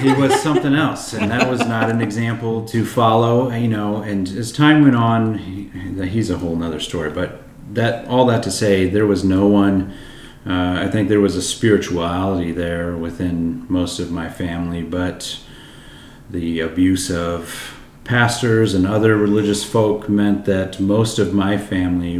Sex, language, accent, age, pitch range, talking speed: male, English, American, 30-49, 85-105 Hz, 170 wpm